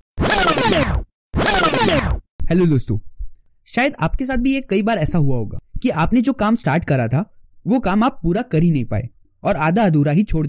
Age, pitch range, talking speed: 20-39, 150-235 Hz, 185 wpm